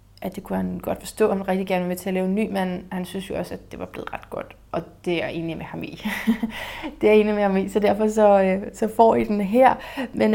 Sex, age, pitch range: female, 30-49, 180-220 Hz